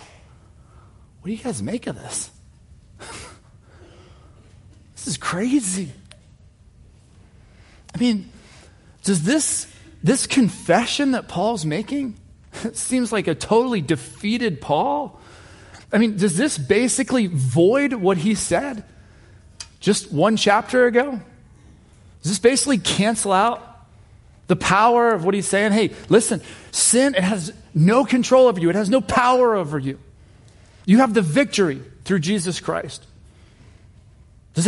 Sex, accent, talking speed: male, American, 125 wpm